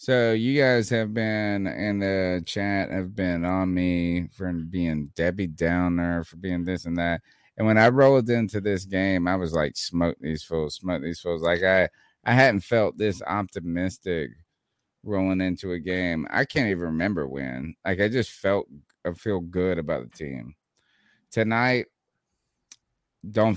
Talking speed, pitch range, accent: 165 wpm, 85-110 Hz, American